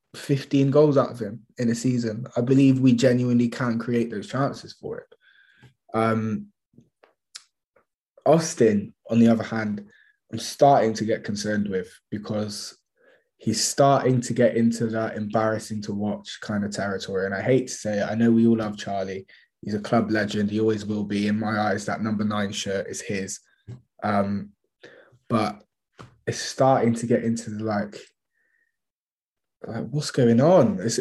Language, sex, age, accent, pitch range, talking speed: English, male, 20-39, British, 110-135 Hz, 165 wpm